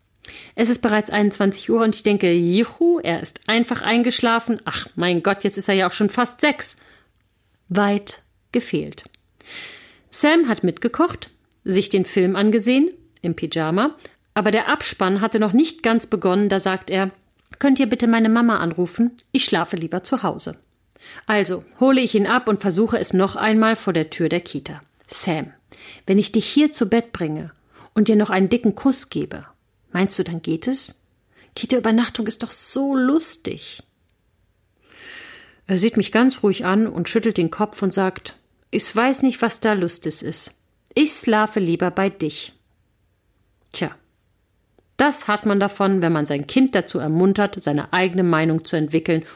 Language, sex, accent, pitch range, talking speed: German, female, German, 170-230 Hz, 165 wpm